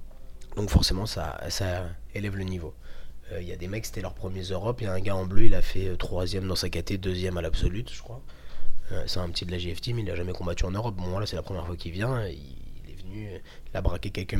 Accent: French